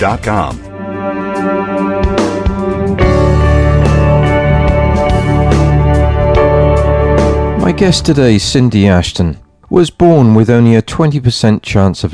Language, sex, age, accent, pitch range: English, male, 40-59, British, 85-115 Hz